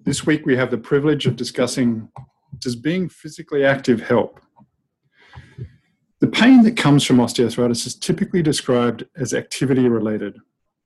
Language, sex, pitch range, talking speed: English, male, 120-155 Hz, 140 wpm